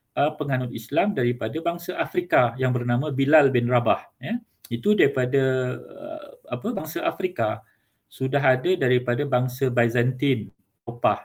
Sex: male